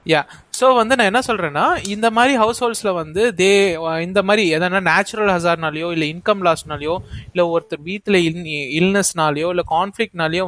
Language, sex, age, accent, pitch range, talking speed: Tamil, male, 20-39, native, 160-205 Hz, 125 wpm